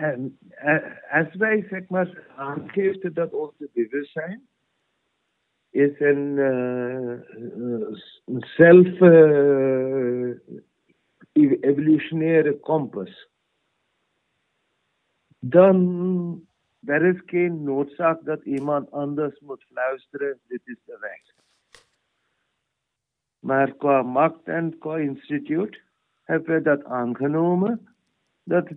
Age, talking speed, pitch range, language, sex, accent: 60-79, 90 wpm, 135-170 Hz, Dutch, male, Indian